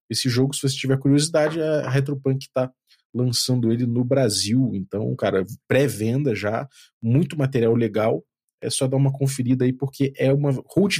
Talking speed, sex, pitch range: 165 wpm, male, 120-145 Hz